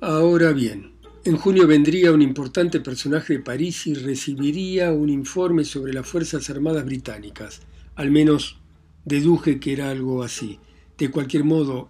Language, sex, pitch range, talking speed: Spanish, male, 125-155 Hz, 145 wpm